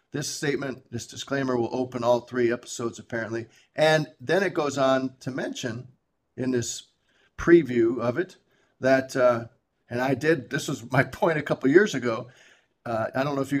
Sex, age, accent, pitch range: male, 50-69, American, 125-140 Hz